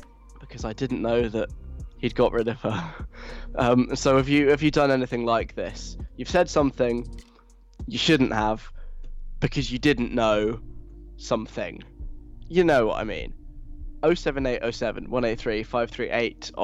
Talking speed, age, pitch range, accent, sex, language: 135 wpm, 10-29, 110-130 Hz, British, male, English